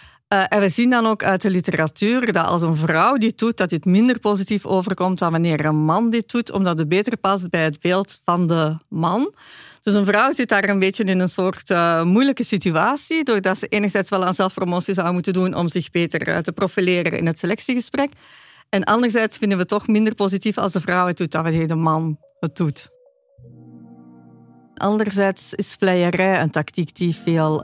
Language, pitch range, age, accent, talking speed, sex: Dutch, 170-210 Hz, 40-59, Dutch, 200 wpm, female